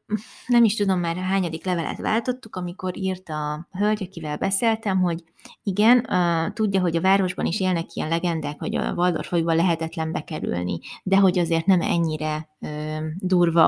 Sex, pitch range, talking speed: female, 165-205 Hz, 150 wpm